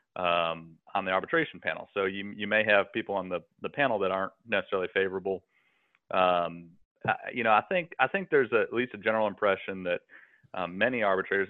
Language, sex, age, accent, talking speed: English, male, 30-49, American, 200 wpm